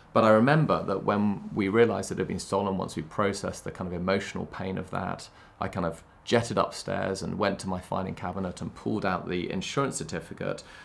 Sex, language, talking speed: male, English, 215 wpm